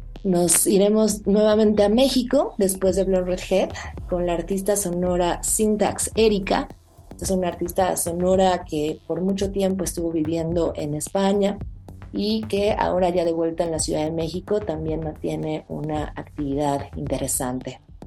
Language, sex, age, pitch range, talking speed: Spanish, female, 30-49, 155-185 Hz, 145 wpm